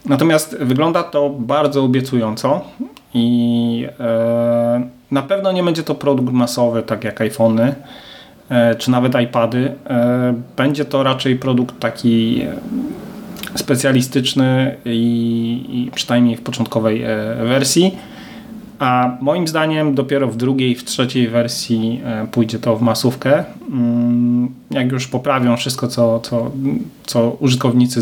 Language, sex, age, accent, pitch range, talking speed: Polish, male, 30-49, native, 120-145 Hz, 110 wpm